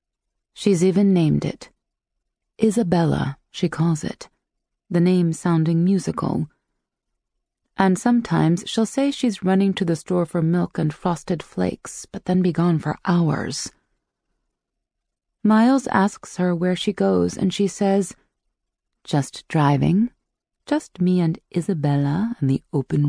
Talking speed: 130 wpm